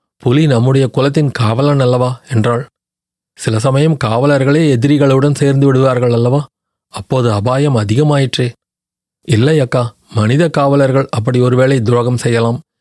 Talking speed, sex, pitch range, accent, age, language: 110 wpm, male, 120-145 Hz, native, 30-49, Tamil